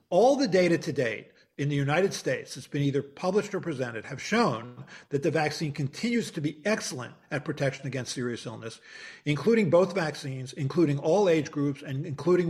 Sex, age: male, 50-69